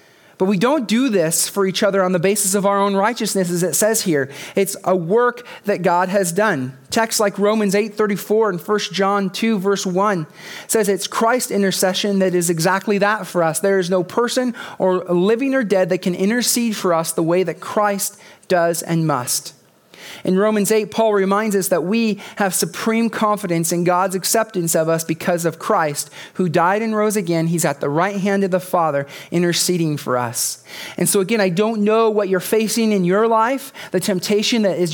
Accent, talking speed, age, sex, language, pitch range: American, 205 wpm, 40-59, male, English, 180-210 Hz